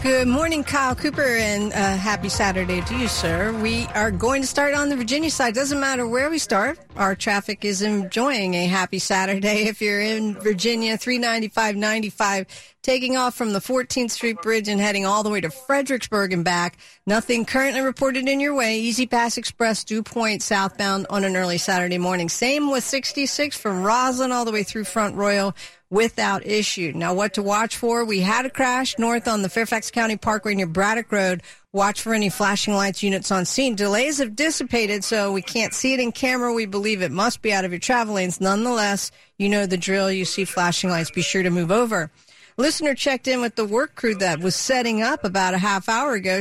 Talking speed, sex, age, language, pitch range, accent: 210 wpm, female, 50-69, English, 195-245 Hz, American